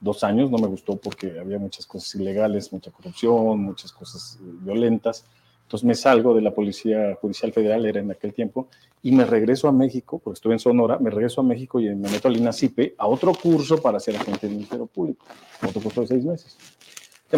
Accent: Mexican